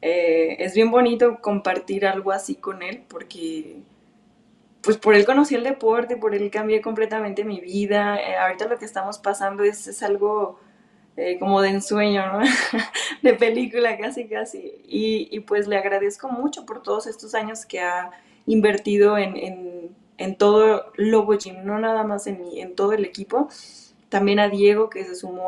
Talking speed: 175 wpm